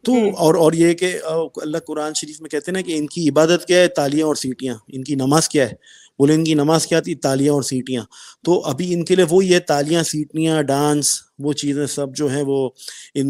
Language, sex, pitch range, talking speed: Urdu, male, 140-180 Hz, 235 wpm